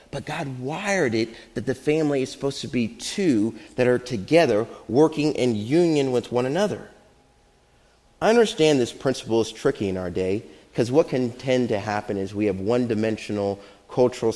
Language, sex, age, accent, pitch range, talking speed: English, male, 30-49, American, 115-160 Hz, 170 wpm